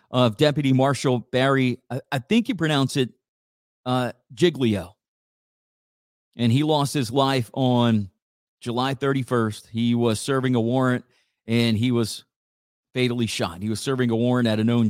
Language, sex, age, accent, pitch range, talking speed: English, male, 40-59, American, 110-130 Hz, 155 wpm